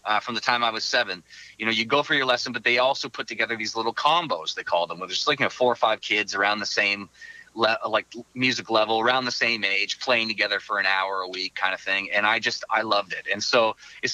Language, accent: English, American